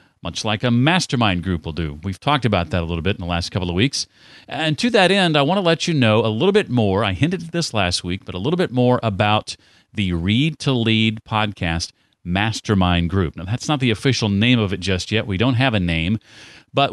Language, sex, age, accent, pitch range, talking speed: English, male, 40-59, American, 95-135 Hz, 245 wpm